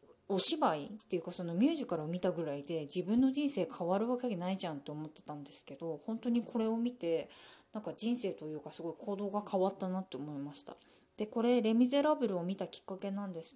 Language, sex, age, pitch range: Japanese, female, 20-39, 165-230 Hz